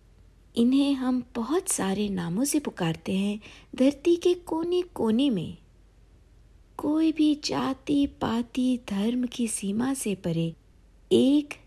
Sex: female